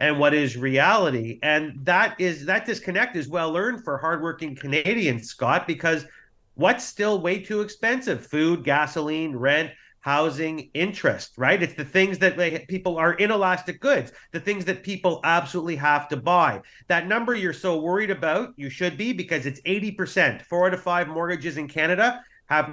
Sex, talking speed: male, 165 wpm